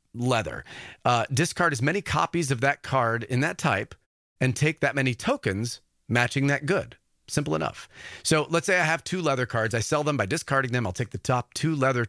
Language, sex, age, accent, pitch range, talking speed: English, male, 40-59, American, 110-150 Hz, 210 wpm